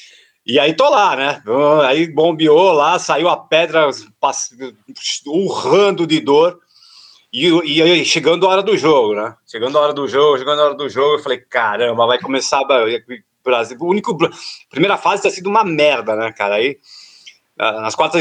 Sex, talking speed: male, 175 wpm